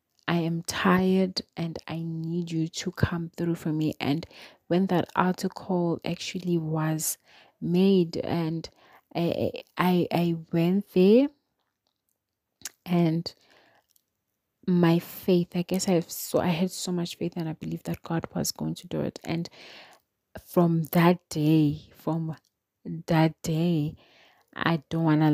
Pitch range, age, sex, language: 155-175 Hz, 30-49, female, English